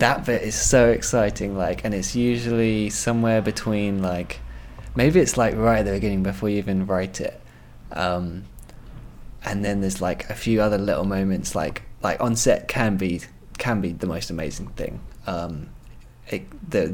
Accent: British